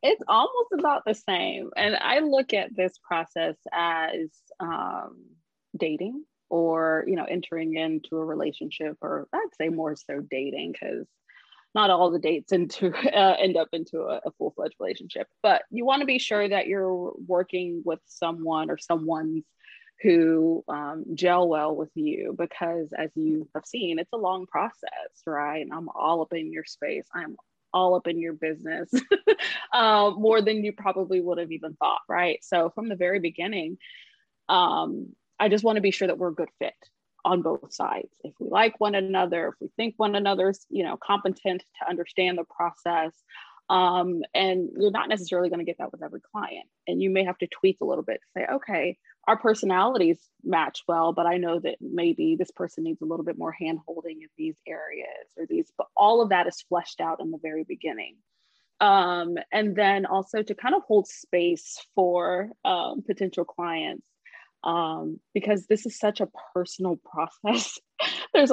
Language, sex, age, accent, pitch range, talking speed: English, female, 20-39, American, 165-215 Hz, 185 wpm